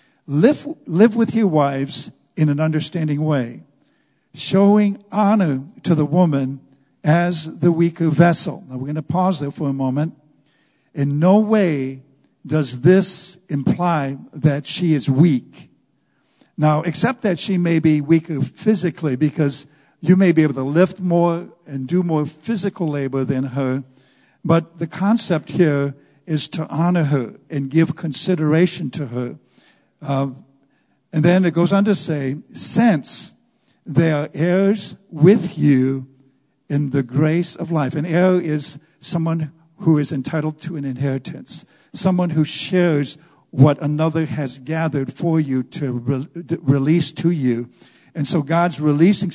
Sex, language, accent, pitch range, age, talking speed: male, English, American, 140-170 Hz, 60-79, 145 wpm